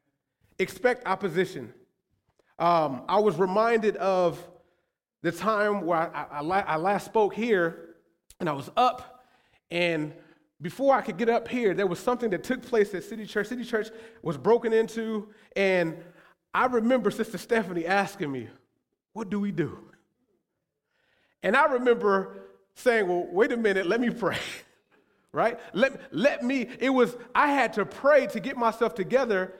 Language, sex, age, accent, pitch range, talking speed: English, male, 30-49, American, 180-230 Hz, 155 wpm